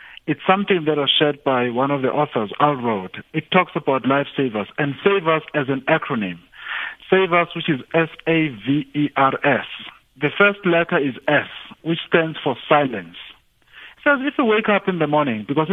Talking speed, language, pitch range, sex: 180 wpm, English, 135-170 Hz, male